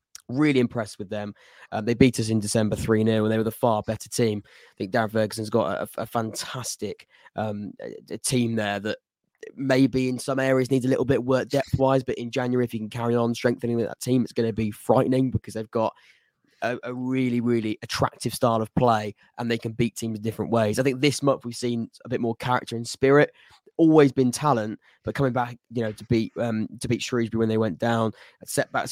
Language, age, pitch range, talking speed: English, 20-39, 110-130 Hz, 225 wpm